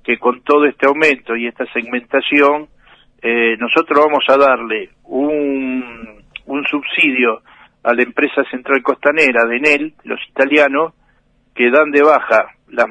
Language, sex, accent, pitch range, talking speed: Spanish, male, Argentinian, 125-155 Hz, 140 wpm